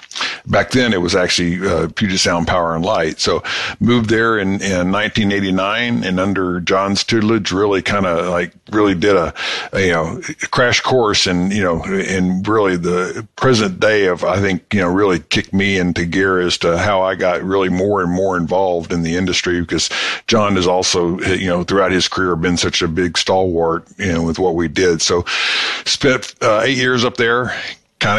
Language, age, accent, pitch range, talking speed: English, 50-69, American, 90-105 Hz, 195 wpm